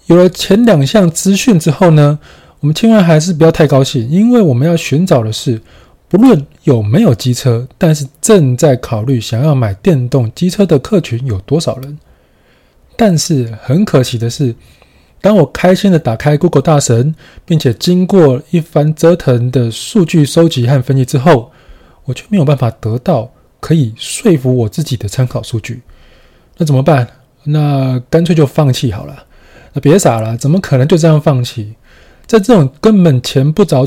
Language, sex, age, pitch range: Chinese, male, 20-39, 125-175 Hz